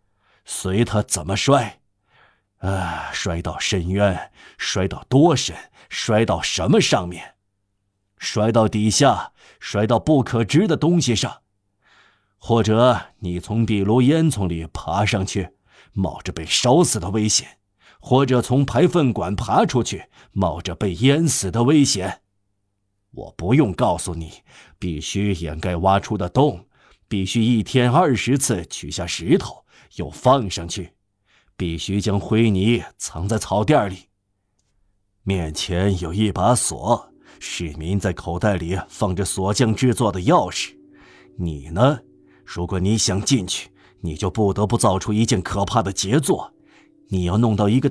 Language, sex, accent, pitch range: Chinese, male, native, 95-120 Hz